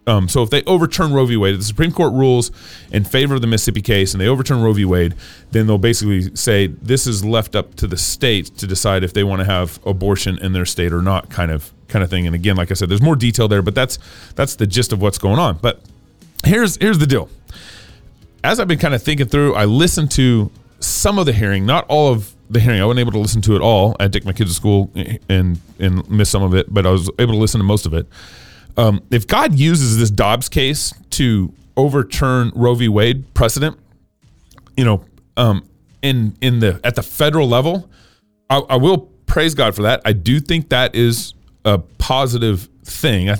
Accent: American